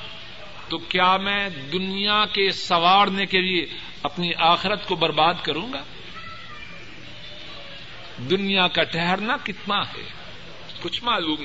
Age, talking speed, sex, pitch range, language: 50-69, 110 wpm, male, 175-225 Hz, Urdu